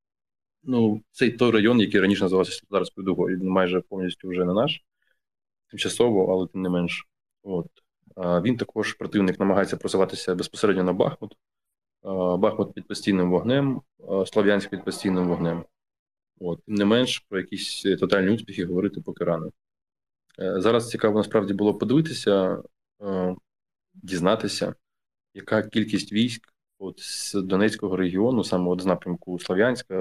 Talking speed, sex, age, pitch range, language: 130 wpm, male, 20-39, 90-105 Hz, Ukrainian